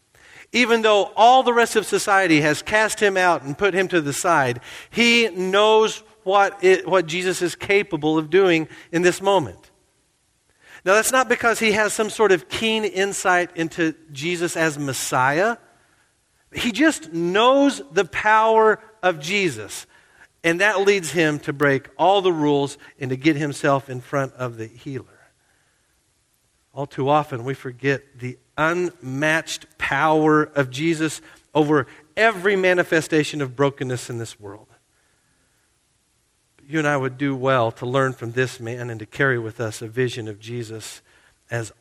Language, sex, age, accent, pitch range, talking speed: English, male, 50-69, American, 130-185 Hz, 155 wpm